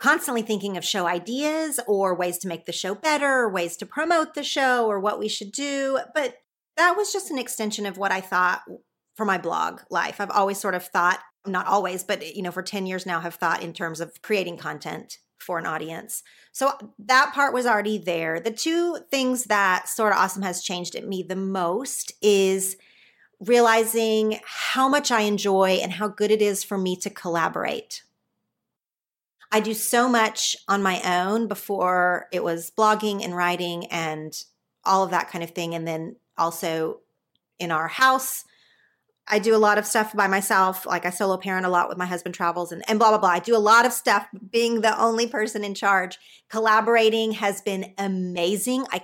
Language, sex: English, female